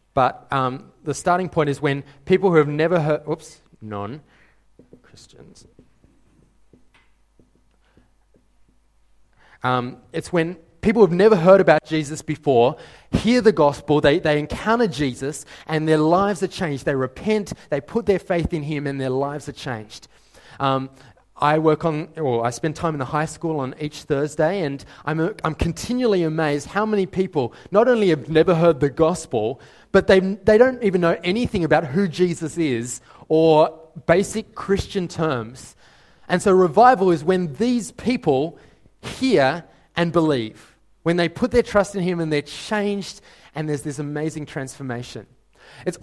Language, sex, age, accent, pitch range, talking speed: English, male, 30-49, Australian, 145-185 Hz, 160 wpm